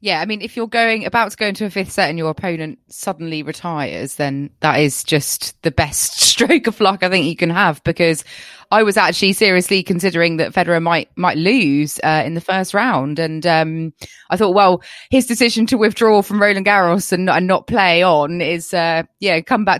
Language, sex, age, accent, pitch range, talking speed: English, female, 20-39, British, 155-195 Hz, 210 wpm